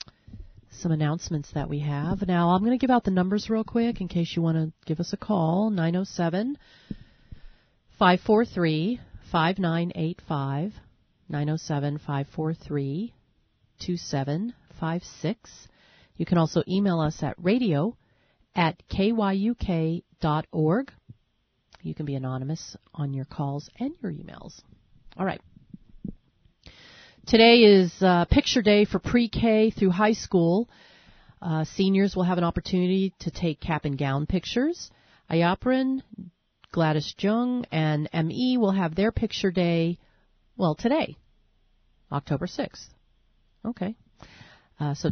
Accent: American